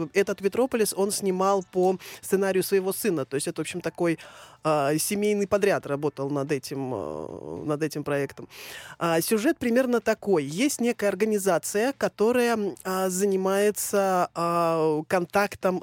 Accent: native